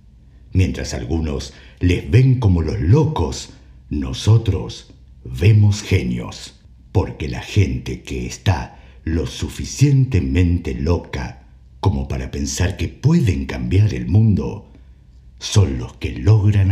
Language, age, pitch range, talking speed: Spanish, 60-79, 65-110 Hz, 110 wpm